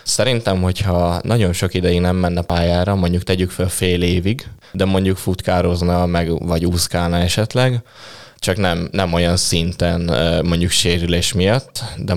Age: 20-39